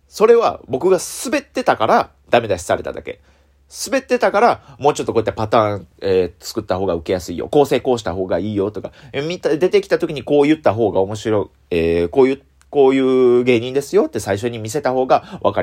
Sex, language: male, Japanese